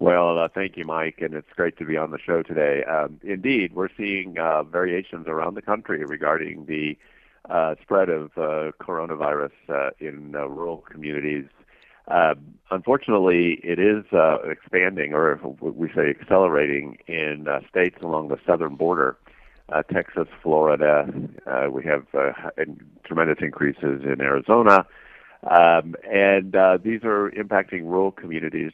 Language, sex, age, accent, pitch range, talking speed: English, male, 50-69, American, 75-90 Hz, 150 wpm